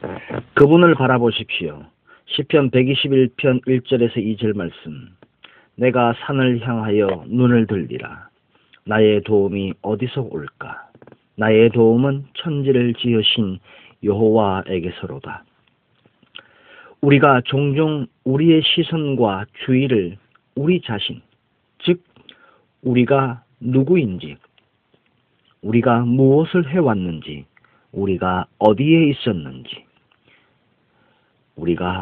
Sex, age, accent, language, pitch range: male, 40-59, native, Korean, 110-150 Hz